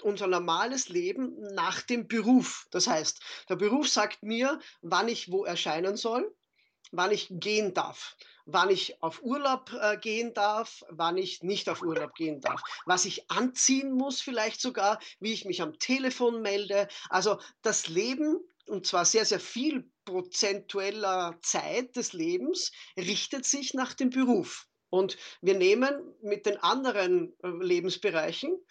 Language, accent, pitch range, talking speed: German, German, 185-265 Hz, 145 wpm